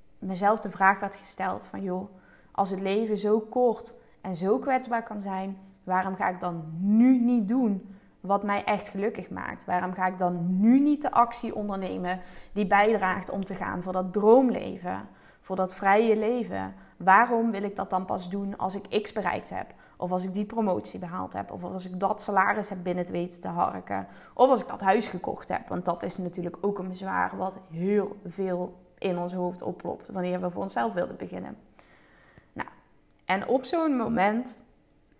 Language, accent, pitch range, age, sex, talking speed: Dutch, Dutch, 185-215 Hz, 20-39, female, 190 wpm